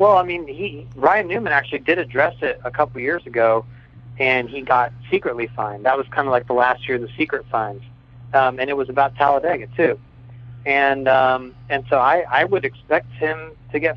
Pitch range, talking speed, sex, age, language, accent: 120-135 Hz, 215 wpm, male, 40-59, English, American